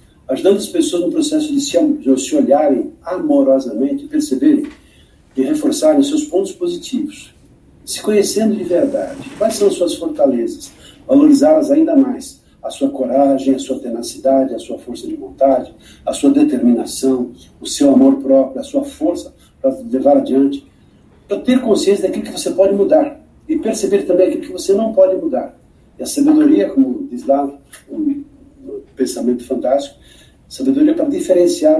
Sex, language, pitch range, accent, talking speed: male, Portuguese, 210-305 Hz, Brazilian, 160 wpm